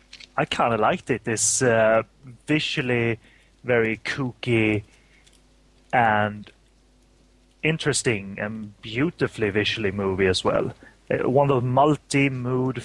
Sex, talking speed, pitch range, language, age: male, 105 wpm, 100-125 Hz, English, 30-49